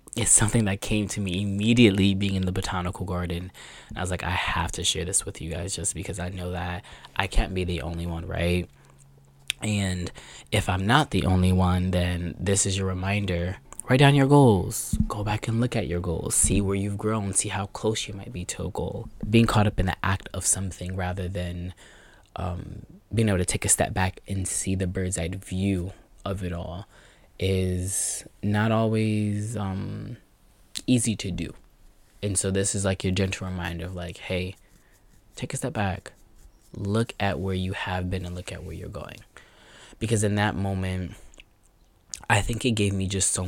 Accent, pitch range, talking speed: American, 90-105 Hz, 200 wpm